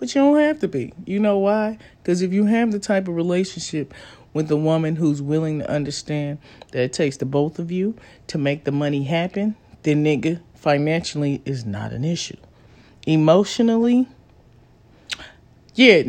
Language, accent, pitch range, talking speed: English, American, 150-205 Hz, 170 wpm